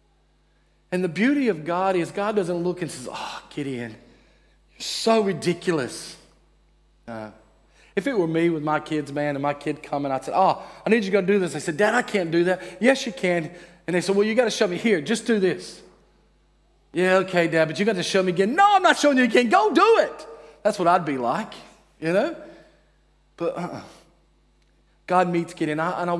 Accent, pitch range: American, 145-235 Hz